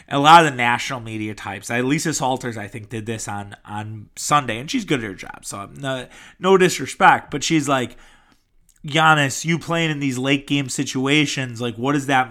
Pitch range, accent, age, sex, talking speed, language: 120-150 Hz, American, 20-39, male, 195 wpm, English